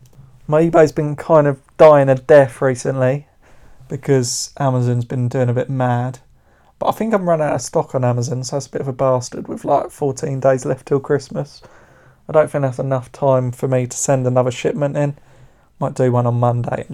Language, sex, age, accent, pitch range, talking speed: English, male, 30-49, British, 125-145 Hz, 215 wpm